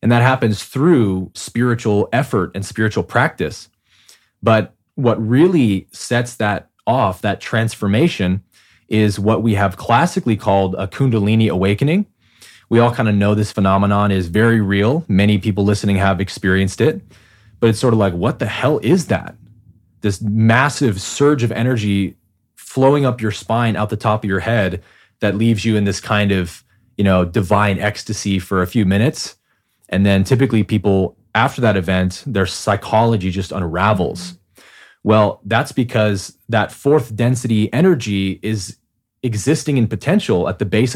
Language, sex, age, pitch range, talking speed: English, male, 20-39, 100-120 Hz, 155 wpm